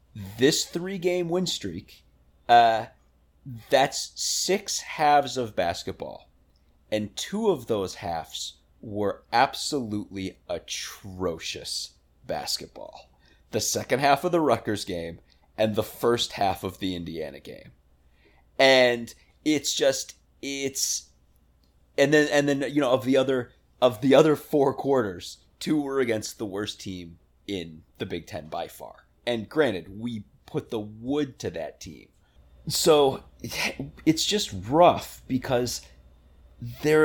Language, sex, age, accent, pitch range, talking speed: English, male, 30-49, American, 85-135 Hz, 130 wpm